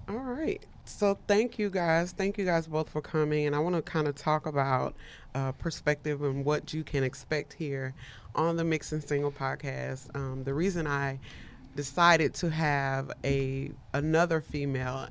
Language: English